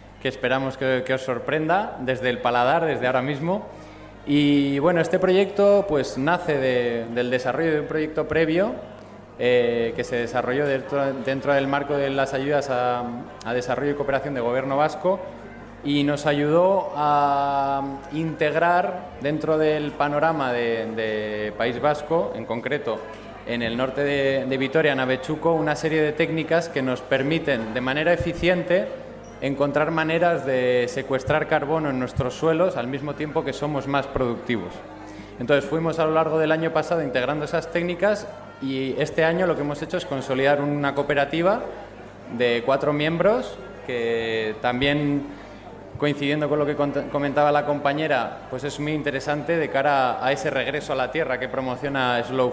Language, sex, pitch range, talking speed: Spanish, male, 130-155 Hz, 160 wpm